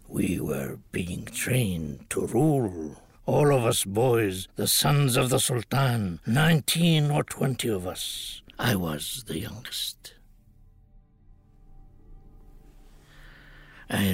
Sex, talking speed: male, 105 wpm